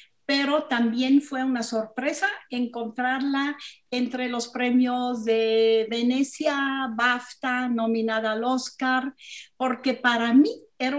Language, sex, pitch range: Spanish, female, 230-280 Hz